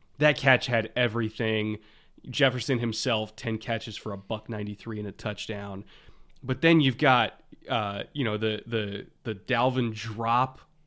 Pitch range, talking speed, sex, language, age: 110-160 Hz, 150 wpm, male, English, 20-39